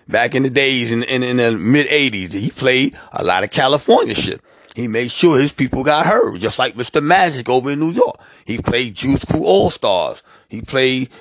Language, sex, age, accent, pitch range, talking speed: English, male, 30-49, American, 115-145 Hz, 205 wpm